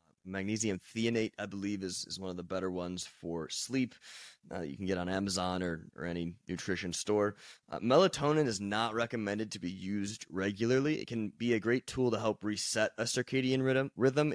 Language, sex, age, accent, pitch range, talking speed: English, male, 20-39, American, 95-115 Hz, 190 wpm